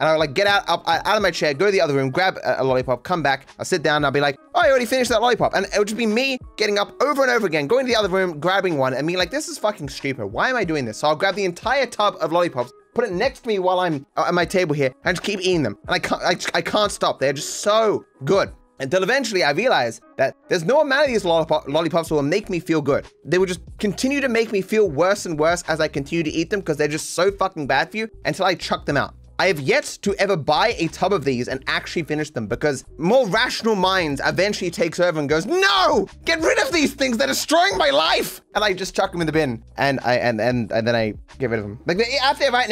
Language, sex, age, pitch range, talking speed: English, male, 20-39, 150-215 Hz, 285 wpm